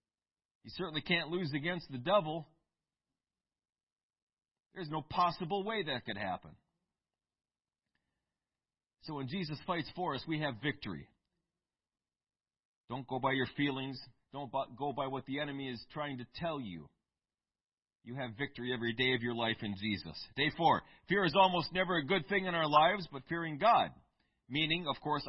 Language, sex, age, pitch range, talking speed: English, male, 40-59, 130-185 Hz, 160 wpm